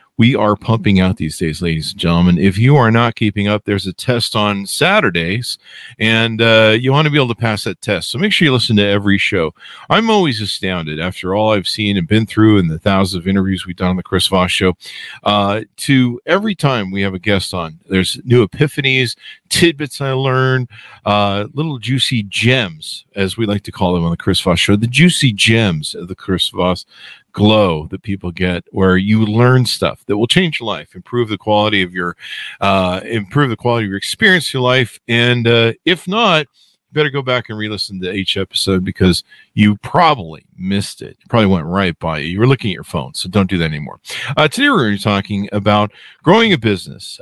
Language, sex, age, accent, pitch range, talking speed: English, male, 50-69, American, 95-125 Hz, 215 wpm